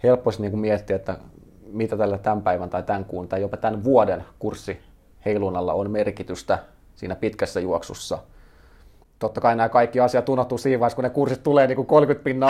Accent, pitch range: native, 90-120 Hz